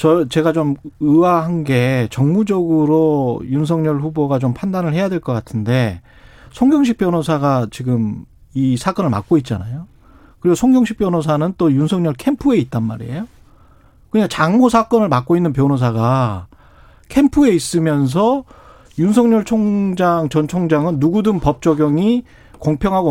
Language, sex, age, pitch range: Korean, male, 40-59, 130-200 Hz